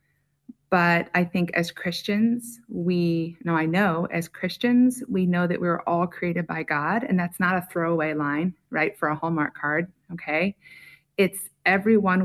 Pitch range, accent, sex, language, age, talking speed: 170-215 Hz, American, female, English, 30-49, 160 wpm